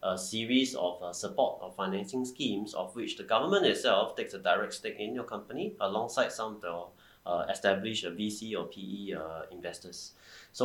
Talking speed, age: 180 wpm, 30-49